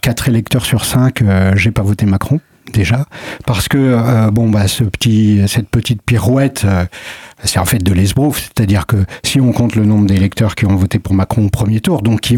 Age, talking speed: 50-69, 215 wpm